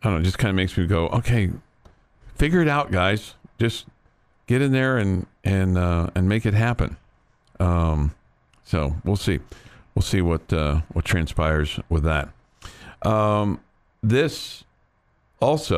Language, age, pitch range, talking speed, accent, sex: English, 50-69, 90-115 Hz, 155 wpm, American, male